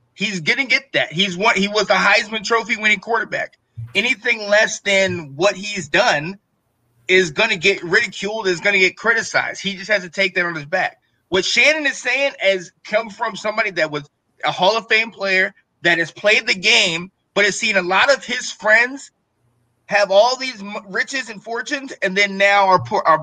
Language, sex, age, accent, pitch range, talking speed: English, male, 20-39, American, 165-225 Hz, 195 wpm